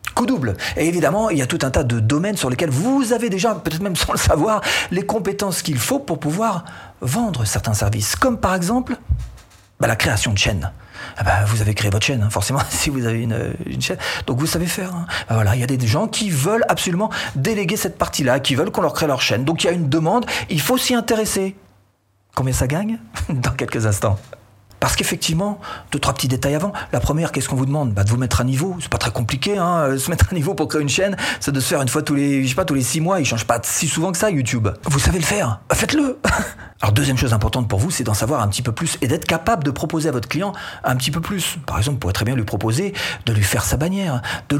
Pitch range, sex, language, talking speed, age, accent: 115-180 Hz, male, French, 260 wpm, 40-59, French